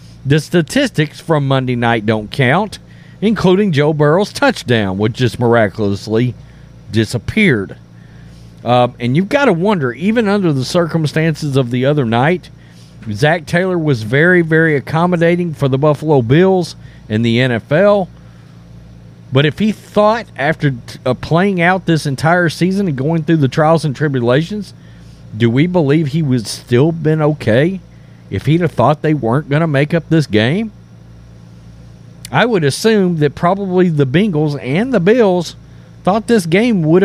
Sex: male